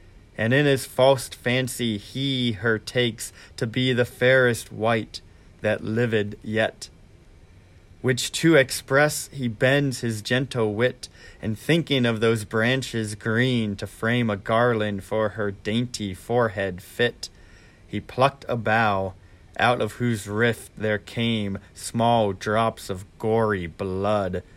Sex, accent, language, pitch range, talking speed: male, American, English, 100-120 Hz, 130 wpm